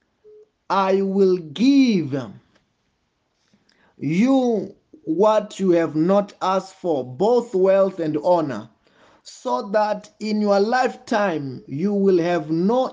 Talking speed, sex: 105 wpm, male